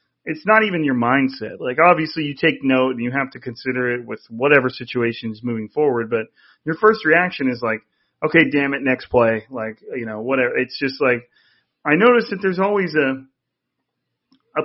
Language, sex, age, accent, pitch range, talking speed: English, male, 30-49, American, 125-170 Hz, 190 wpm